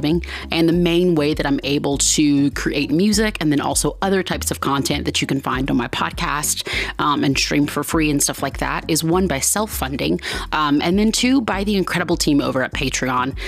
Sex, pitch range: female, 145-180 Hz